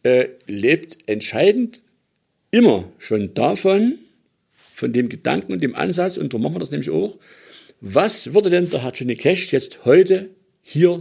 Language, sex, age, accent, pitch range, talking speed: German, male, 50-69, German, 130-195 Hz, 155 wpm